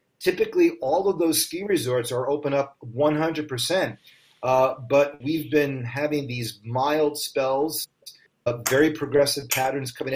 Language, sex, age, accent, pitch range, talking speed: English, male, 40-59, American, 125-150 Hz, 135 wpm